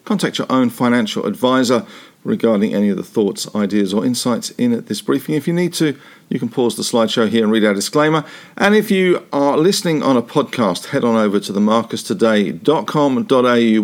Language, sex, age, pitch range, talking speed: English, male, 50-69, 105-140 Hz, 195 wpm